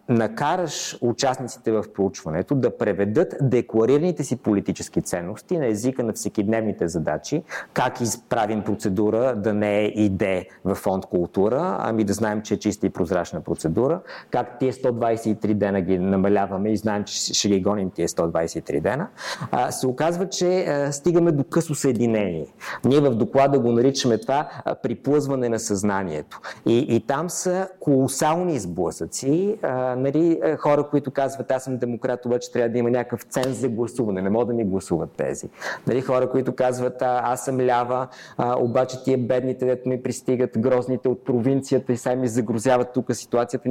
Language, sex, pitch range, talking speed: Bulgarian, male, 110-135 Hz, 160 wpm